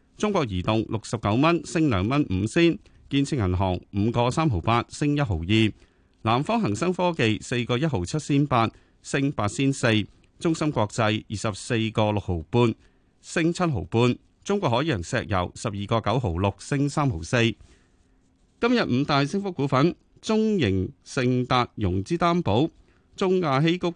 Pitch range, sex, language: 100-155 Hz, male, Chinese